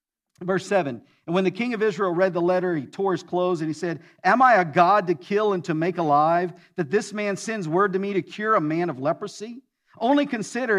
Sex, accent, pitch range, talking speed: male, American, 160-205 Hz, 240 wpm